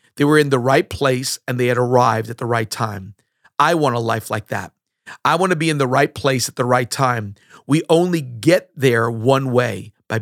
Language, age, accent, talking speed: English, 40-59, American, 230 wpm